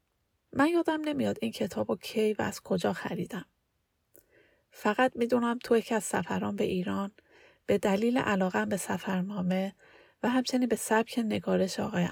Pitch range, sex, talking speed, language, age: 185-225 Hz, female, 155 wpm, Persian, 30-49